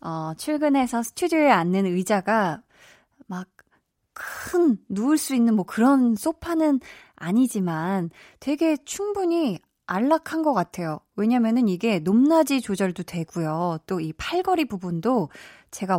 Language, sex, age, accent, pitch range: Korean, female, 20-39, native, 180-260 Hz